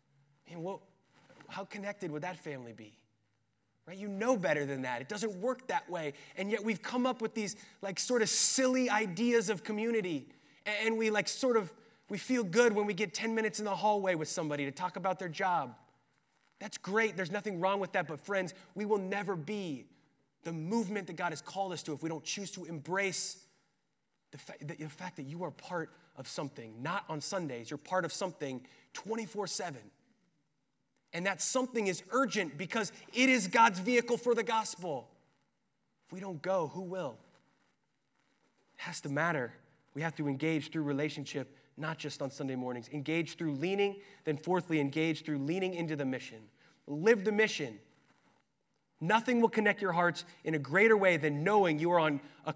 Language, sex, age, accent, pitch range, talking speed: English, male, 20-39, American, 150-210 Hz, 190 wpm